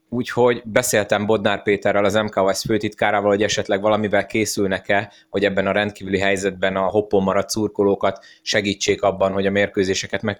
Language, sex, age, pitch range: Hungarian, male, 20-39, 95-105 Hz